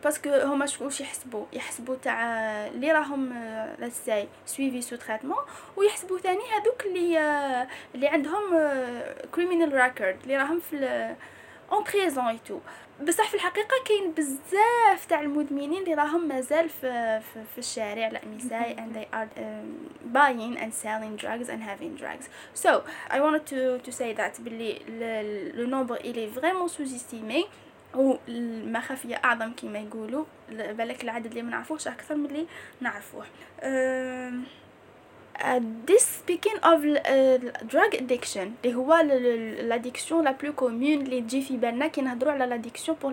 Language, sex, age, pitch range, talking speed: Arabic, female, 20-39, 240-320 Hz, 75 wpm